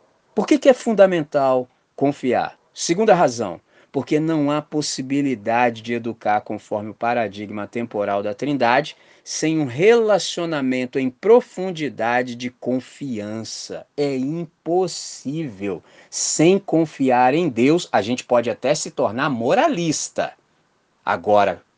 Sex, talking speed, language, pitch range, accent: male, 115 wpm, Portuguese, 125-195 Hz, Brazilian